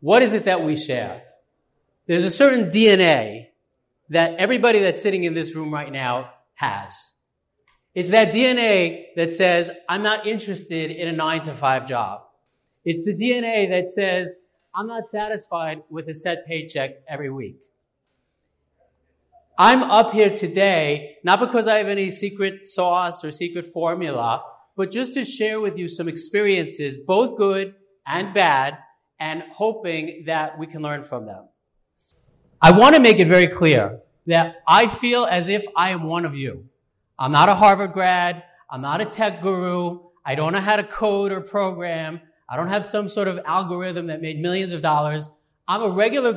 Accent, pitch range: American, 155-205 Hz